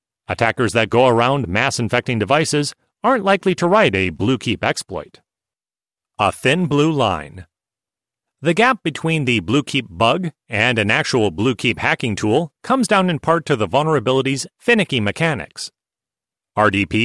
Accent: American